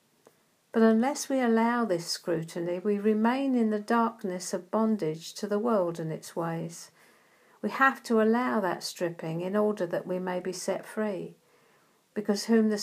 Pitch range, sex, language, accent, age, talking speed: 180-215 Hz, female, English, British, 50-69, 170 wpm